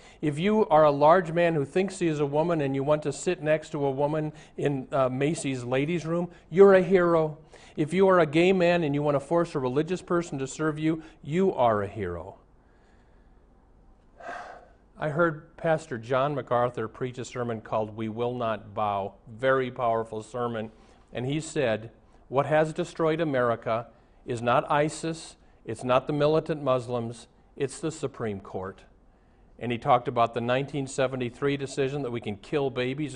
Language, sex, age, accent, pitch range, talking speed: English, male, 50-69, American, 115-160 Hz, 175 wpm